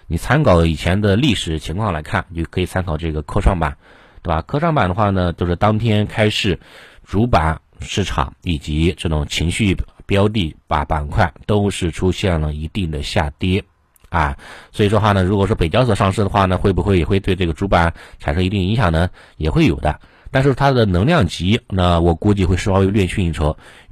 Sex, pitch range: male, 80-105 Hz